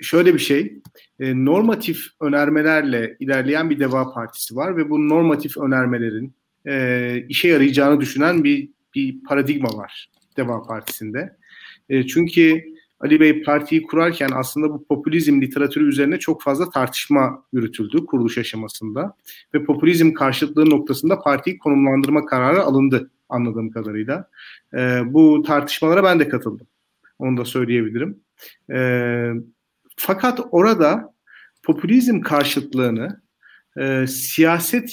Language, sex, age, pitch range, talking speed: Turkish, male, 40-59, 135-175 Hz, 115 wpm